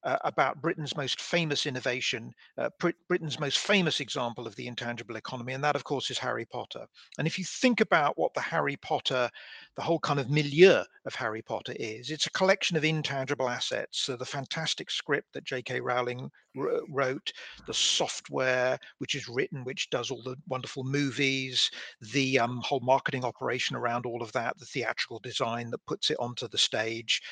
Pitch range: 125-155 Hz